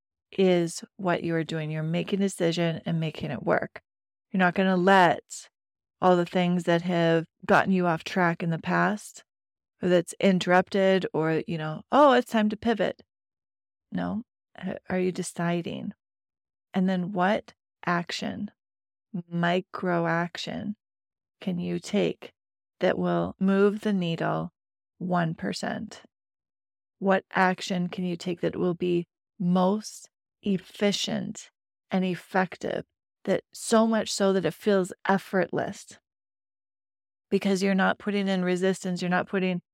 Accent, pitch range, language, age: American, 170-195 Hz, English, 30-49